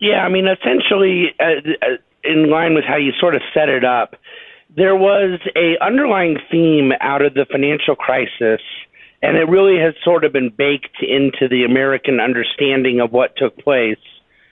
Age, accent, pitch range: 50-69, American, 130-165 Hz